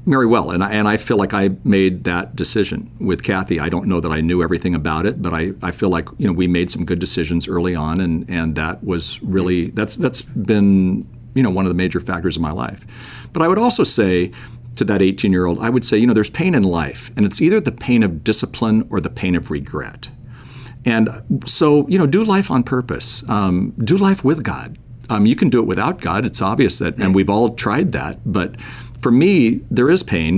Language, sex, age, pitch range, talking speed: English, male, 50-69, 90-120 Hz, 235 wpm